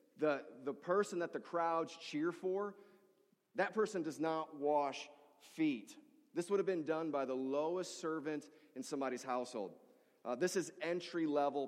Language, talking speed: English, 155 wpm